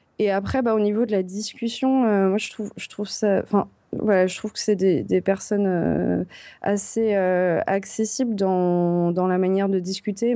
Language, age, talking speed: French, 20-39, 190 wpm